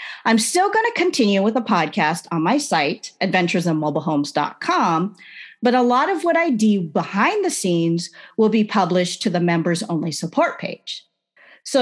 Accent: American